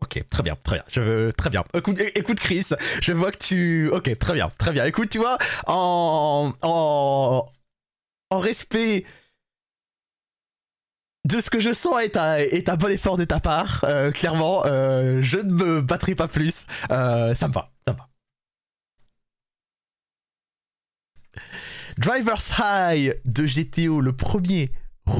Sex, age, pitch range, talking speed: male, 30-49, 120-170 Hz, 150 wpm